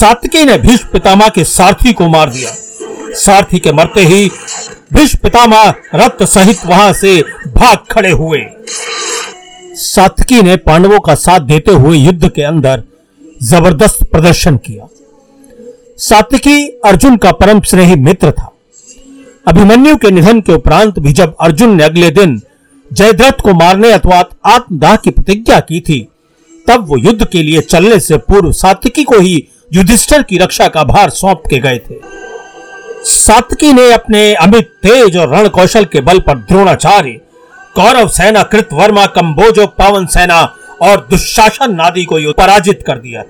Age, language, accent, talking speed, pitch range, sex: 50-69, Hindi, native, 140 wpm, 170-235 Hz, male